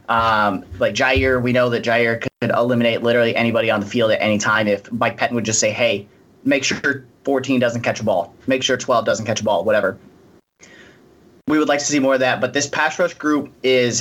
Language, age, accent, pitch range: English, 30-49, American, 115-140 Hz